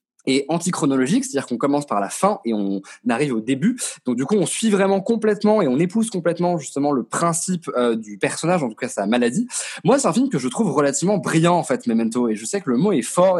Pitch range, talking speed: 140-205 Hz, 245 wpm